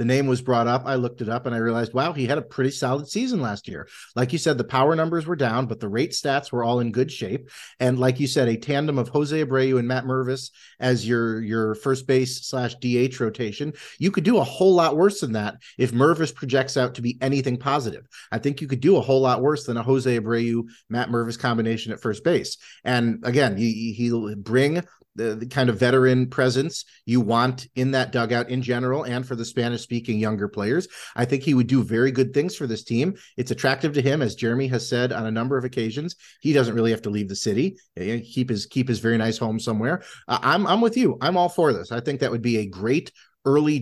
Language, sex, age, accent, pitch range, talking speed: English, male, 40-59, American, 115-135 Hz, 240 wpm